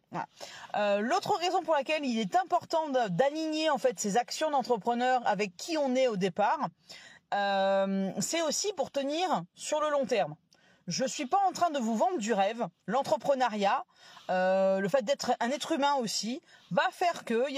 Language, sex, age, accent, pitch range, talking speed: French, female, 30-49, French, 220-295 Hz, 180 wpm